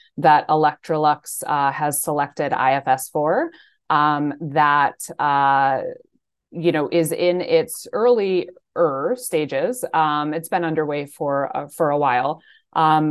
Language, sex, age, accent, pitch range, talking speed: English, female, 20-39, American, 150-170 Hz, 125 wpm